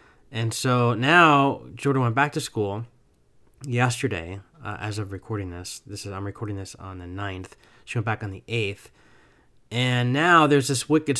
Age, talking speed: 20-39, 175 wpm